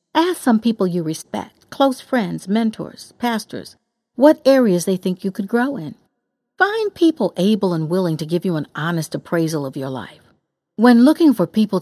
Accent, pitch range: American, 170-235 Hz